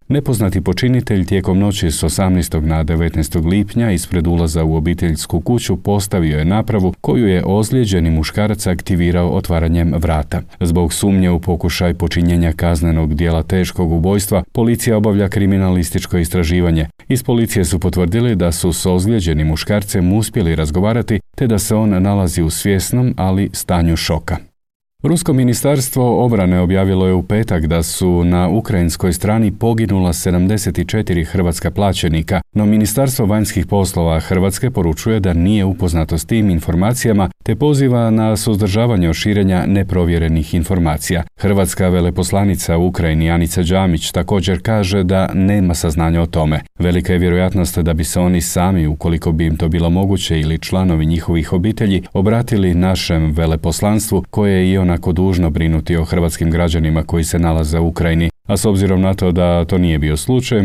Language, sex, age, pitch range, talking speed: Croatian, male, 40-59, 85-100 Hz, 150 wpm